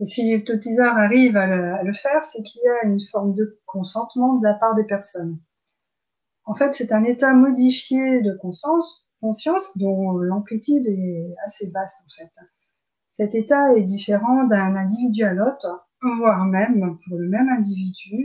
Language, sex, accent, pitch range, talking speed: French, female, French, 195-240 Hz, 165 wpm